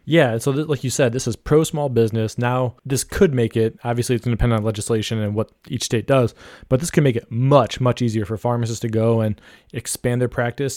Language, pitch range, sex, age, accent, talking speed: English, 115-130 Hz, male, 20-39, American, 245 wpm